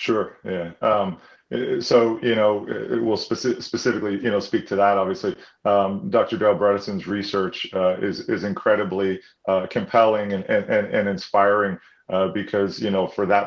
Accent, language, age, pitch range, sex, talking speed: American, English, 30-49, 95-110 Hz, male, 170 wpm